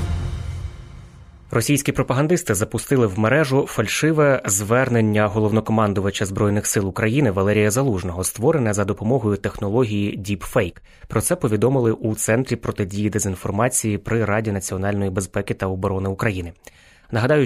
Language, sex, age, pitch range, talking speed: Ukrainian, male, 20-39, 100-120 Hz, 115 wpm